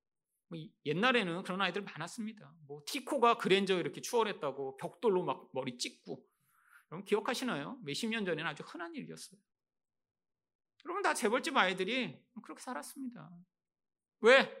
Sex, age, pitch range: male, 40-59, 155-235 Hz